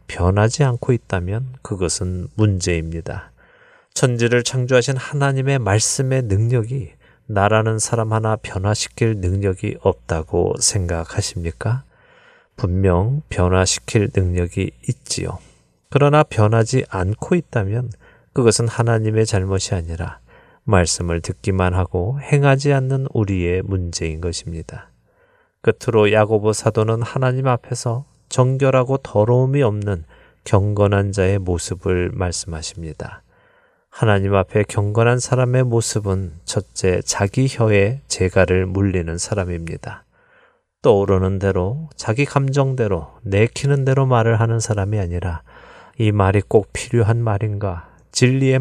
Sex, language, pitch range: male, Korean, 95-125 Hz